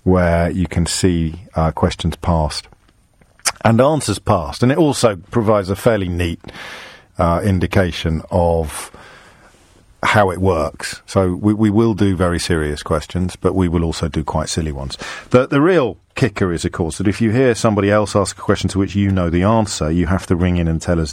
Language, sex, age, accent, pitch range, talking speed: English, male, 40-59, British, 85-105 Hz, 200 wpm